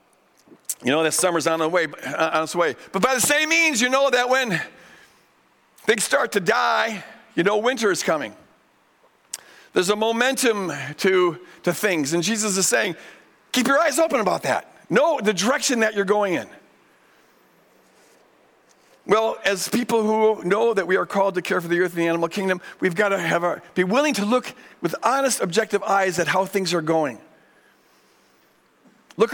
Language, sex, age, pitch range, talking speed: English, male, 50-69, 180-230 Hz, 180 wpm